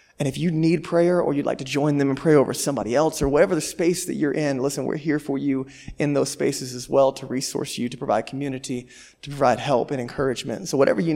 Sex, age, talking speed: male, 20-39, 255 wpm